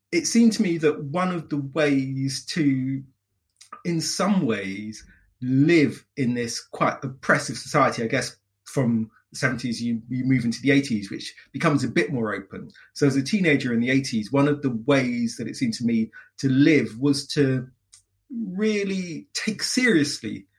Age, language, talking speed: 30-49, English, 170 wpm